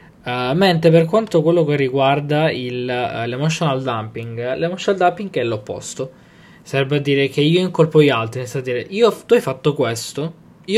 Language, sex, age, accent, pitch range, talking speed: Italian, male, 20-39, native, 130-165 Hz, 180 wpm